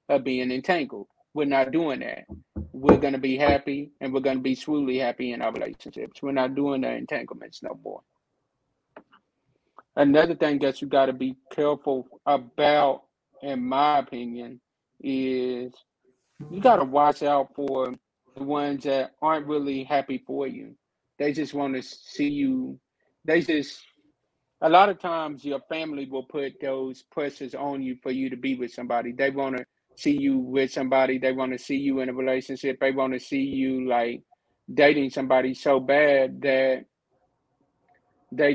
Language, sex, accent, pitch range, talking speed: English, male, American, 130-150 Hz, 170 wpm